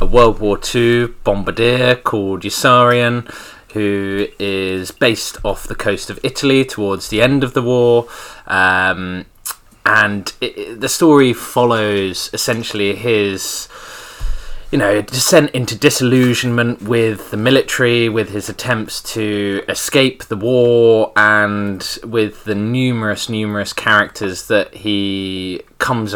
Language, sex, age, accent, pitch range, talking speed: English, male, 20-39, British, 100-120 Hz, 120 wpm